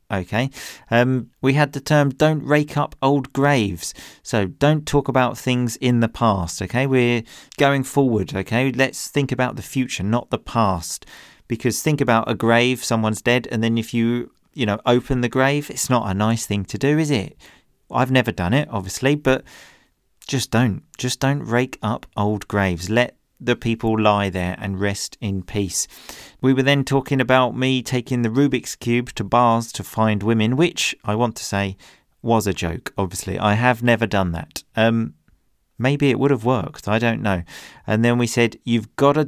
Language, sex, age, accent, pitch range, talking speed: English, male, 40-59, British, 110-135 Hz, 190 wpm